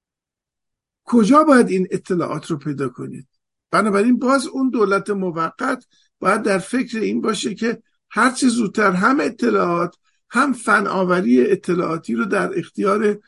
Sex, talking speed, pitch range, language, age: male, 135 wpm, 175-225 Hz, Persian, 50-69